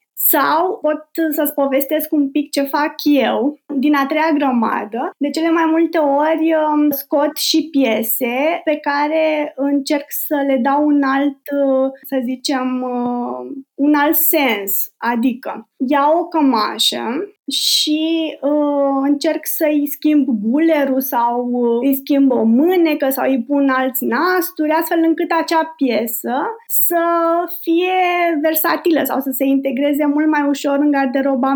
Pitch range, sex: 265-315 Hz, female